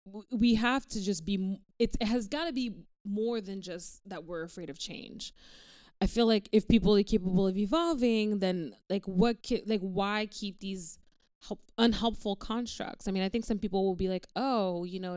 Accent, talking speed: American, 195 wpm